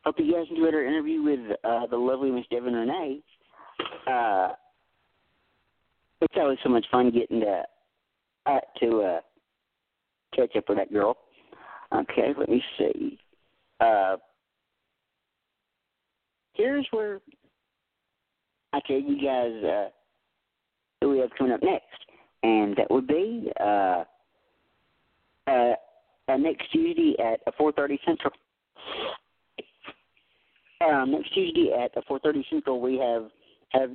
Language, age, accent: English, 50-69, American